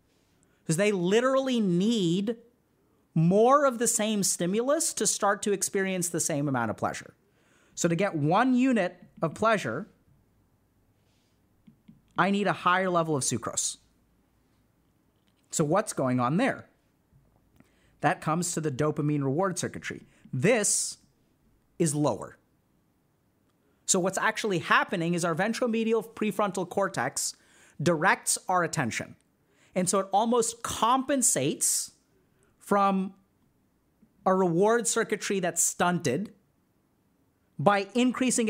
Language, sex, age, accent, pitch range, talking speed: English, male, 30-49, American, 165-220 Hz, 110 wpm